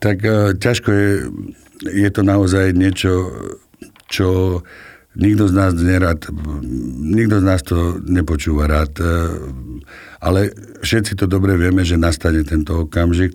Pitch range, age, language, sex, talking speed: 85-95 Hz, 60-79, Slovak, male, 120 wpm